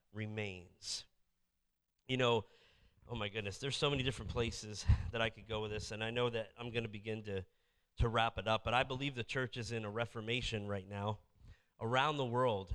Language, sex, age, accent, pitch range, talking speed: English, male, 30-49, American, 110-135 Hz, 205 wpm